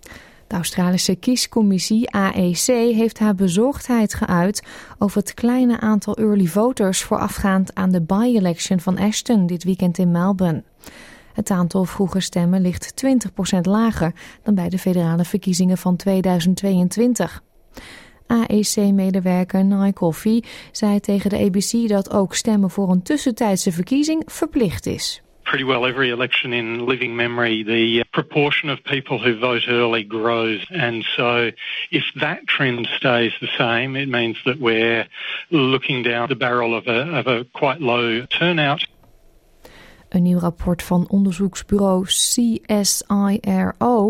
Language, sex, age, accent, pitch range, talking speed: Dutch, female, 20-39, Dutch, 155-215 Hz, 130 wpm